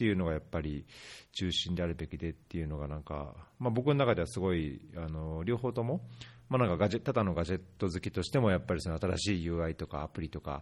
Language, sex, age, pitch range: Japanese, male, 40-59, 85-115 Hz